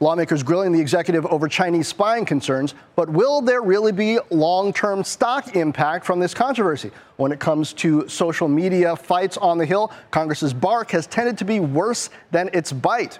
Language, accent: English, American